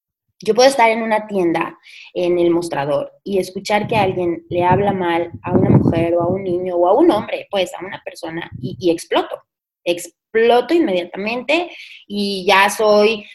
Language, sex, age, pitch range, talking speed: Spanish, female, 20-39, 190-275 Hz, 175 wpm